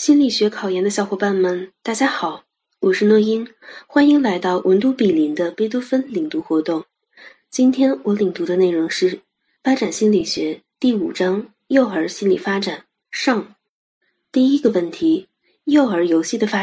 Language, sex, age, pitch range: Chinese, female, 20-39, 190-265 Hz